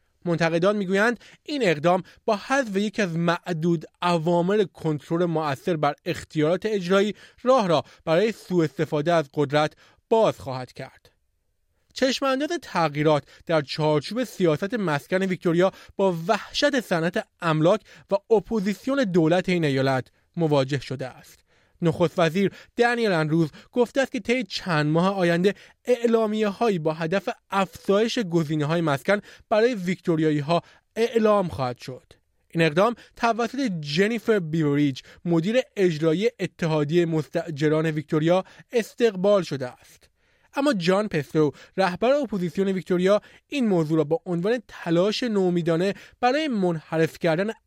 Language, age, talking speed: Persian, 30-49, 120 wpm